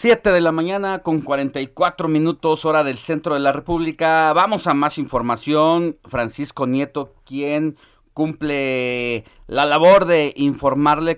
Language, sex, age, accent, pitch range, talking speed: Spanish, male, 40-59, Mexican, 115-145 Hz, 135 wpm